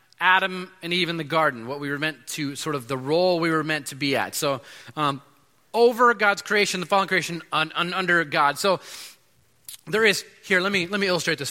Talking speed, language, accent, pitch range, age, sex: 225 wpm, English, American, 155-210 Hz, 30-49, male